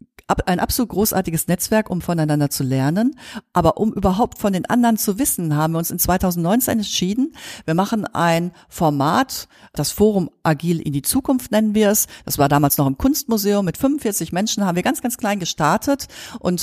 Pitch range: 165-225 Hz